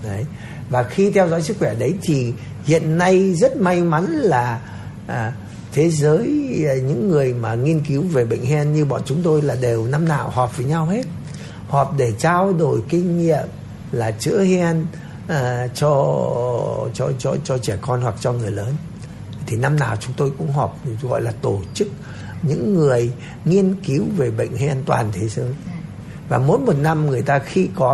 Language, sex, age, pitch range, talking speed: Vietnamese, male, 60-79, 125-165 Hz, 190 wpm